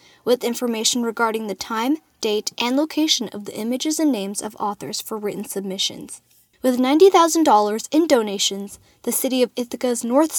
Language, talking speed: English, 155 wpm